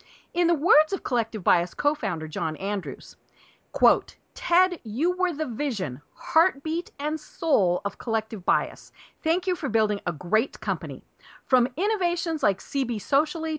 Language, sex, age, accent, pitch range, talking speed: English, female, 40-59, American, 205-310 Hz, 145 wpm